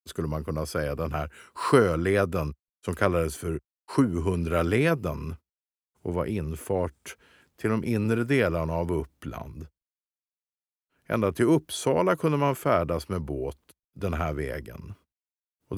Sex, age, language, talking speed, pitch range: male, 50-69, Swedish, 120 wpm, 75-105 Hz